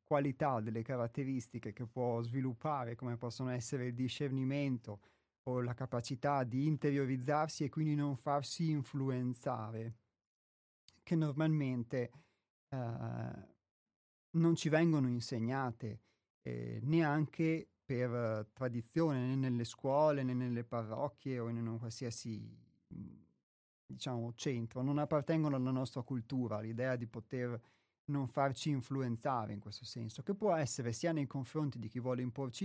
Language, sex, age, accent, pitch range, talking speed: Italian, male, 30-49, native, 115-145 Hz, 125 wpm